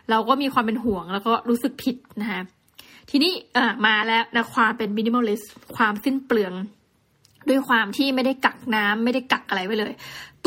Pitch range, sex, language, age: 215-260 Hz, female, Thai, 20-39